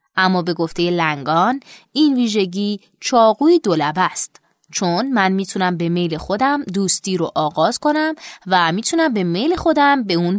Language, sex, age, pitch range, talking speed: Persian, female, 20-39, 180-255 Hz, 150 wpm